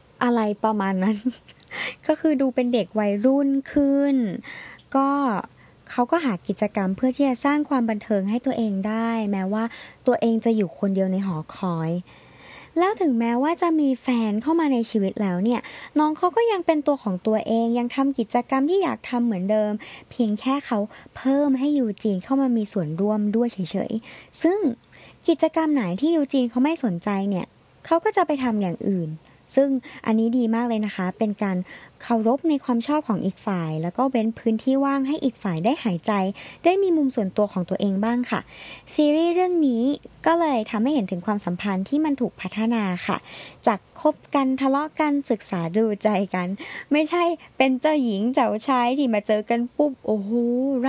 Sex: male